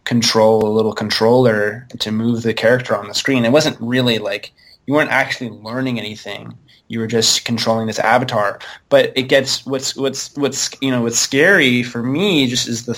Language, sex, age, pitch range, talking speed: English, male, 20-39, 115-130 Hz, 190 wpm